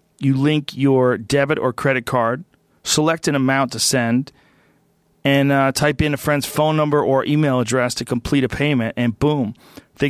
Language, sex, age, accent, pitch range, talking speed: English, male, 40-59, American, 120-145 Hz, 180 wpm